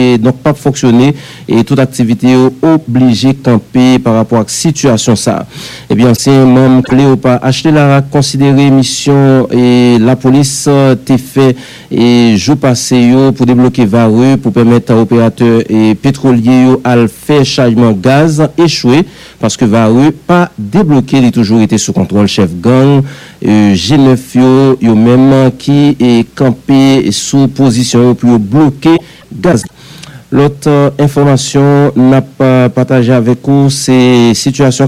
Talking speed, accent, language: 140 wpm, French, English